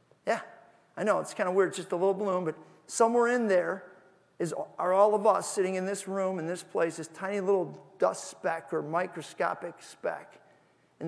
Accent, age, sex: American, 40-59, male